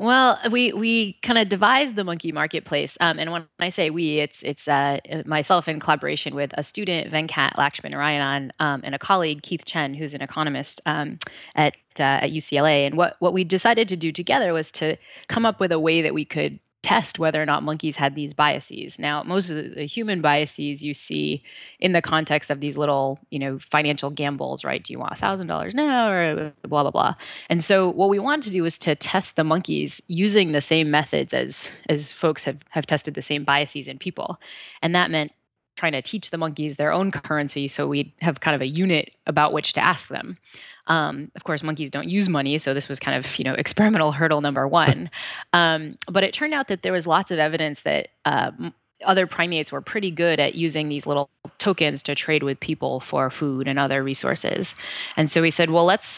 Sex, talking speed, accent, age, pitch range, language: female, 215 wpm, American, 20-39, 145-175 Hz, English